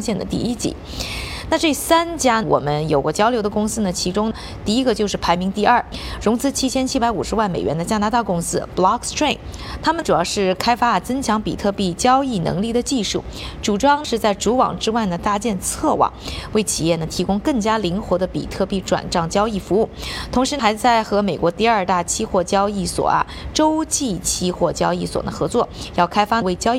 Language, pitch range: Chinese, 180-240 Hz